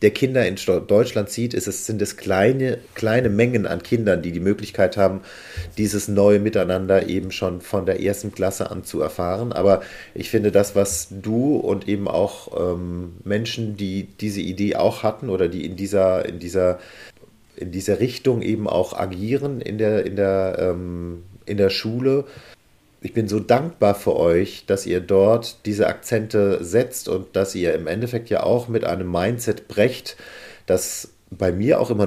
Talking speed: 175 wpm